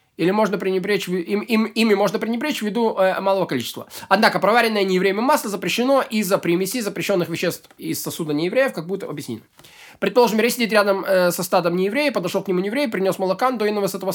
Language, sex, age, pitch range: Russian, male, 20-39, 180-225 Hz